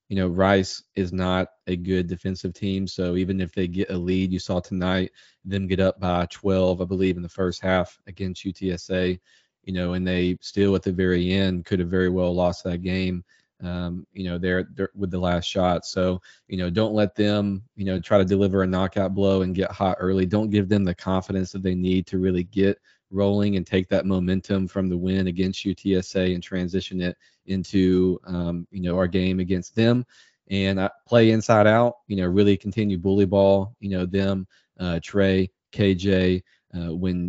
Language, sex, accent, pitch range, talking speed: English, male, American, 90-100 Hz, 205 wpm